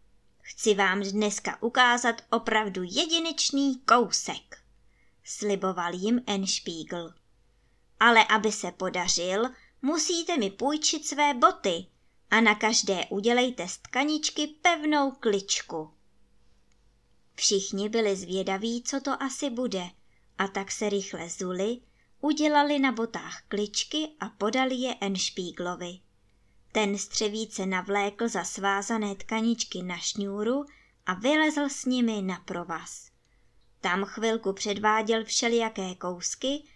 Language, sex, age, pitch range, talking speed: Czech, male, 20-39, 190-270 Hz, 110 wpm